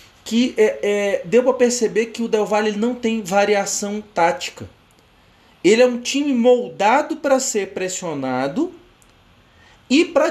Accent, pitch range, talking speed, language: Brazilian, 185-255 Hz, 130 wpm, Portuguese